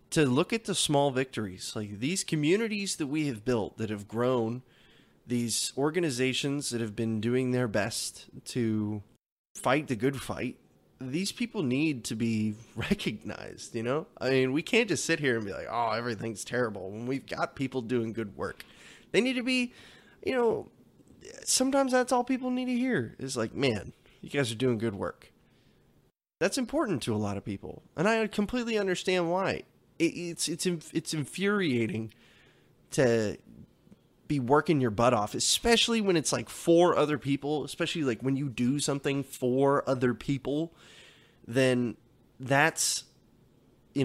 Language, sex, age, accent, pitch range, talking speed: English, male, 20-39, American, 115-155 Hz, 165 wpm